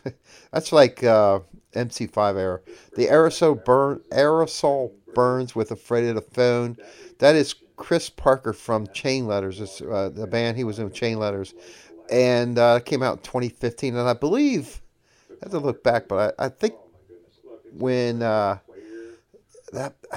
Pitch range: 105-130 Hz